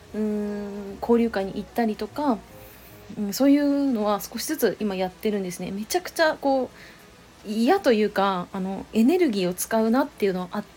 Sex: female